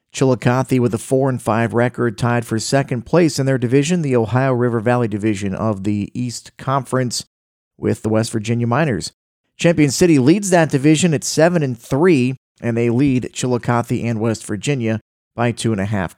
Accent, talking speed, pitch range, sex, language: American, 180 wpm, 115-145 Hz, male, English